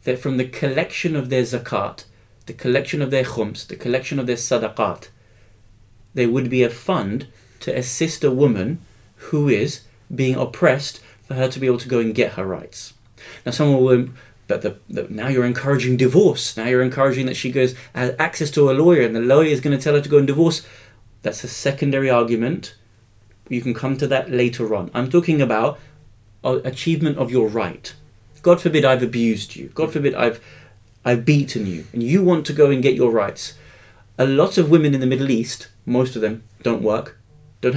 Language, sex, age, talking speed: English, male, 30-49, 195 wpm